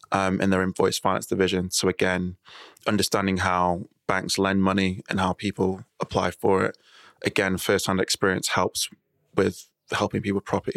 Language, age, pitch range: English, 20-39, 95-100 Hz